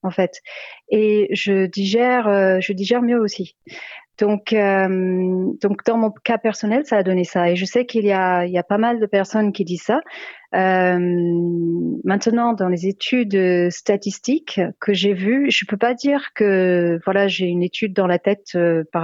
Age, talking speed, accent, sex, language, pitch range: 40-59, 190 wpm, French, female, French, 185-225 Hz